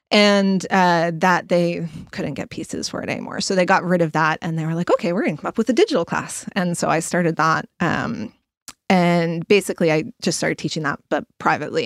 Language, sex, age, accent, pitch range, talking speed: English, female, 20-39, American, 165-210 Hz, 230 wpm